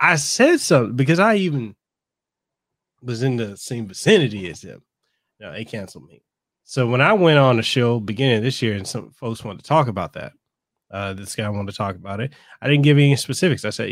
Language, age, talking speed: English, 30-49, 220 wpm